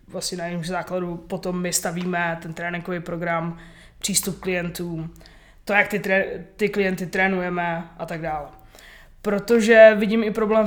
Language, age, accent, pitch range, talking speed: Czech, 20-39, native, 175-200 Hz, 145 wpm